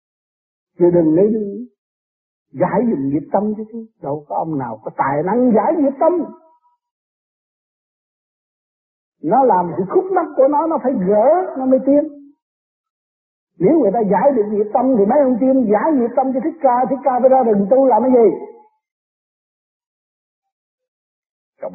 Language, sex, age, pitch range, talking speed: Vietnamese, male, 60-79, 180-285 Hz, 165 wpm